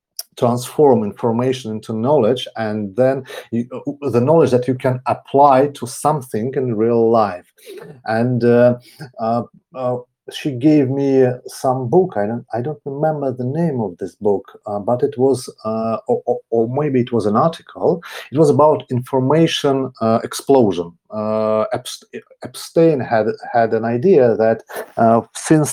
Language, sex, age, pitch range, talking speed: Russian, male, 40-59, 115-145 Hz, 150 wpm